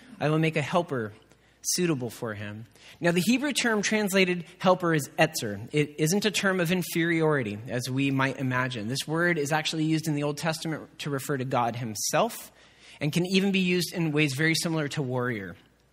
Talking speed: 190 wpm